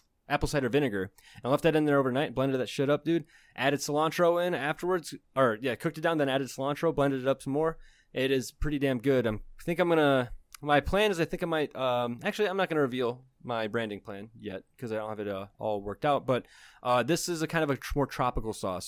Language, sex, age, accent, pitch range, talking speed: English, male, 20-39, American, 120-155 Hz, 250 wpm